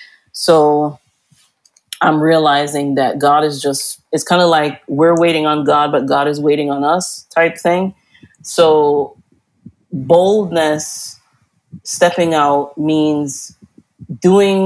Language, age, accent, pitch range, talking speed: English, 30-49, American, 145-170 Hz, 120 wpm